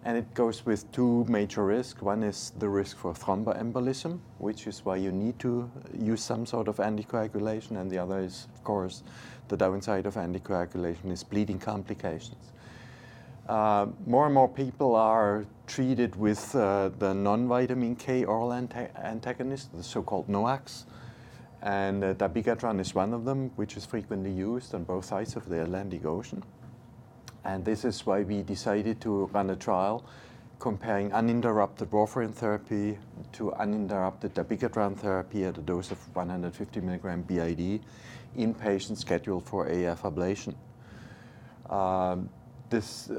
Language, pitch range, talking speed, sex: English, 100-120 Hz, 145 wpm, male